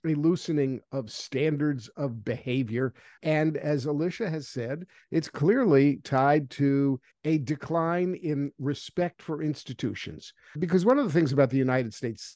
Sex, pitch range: male, 135-165 Hz